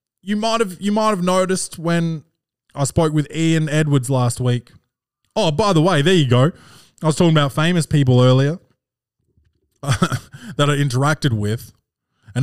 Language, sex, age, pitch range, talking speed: English, male, 20-39, 120-155 Hz, 165 wpm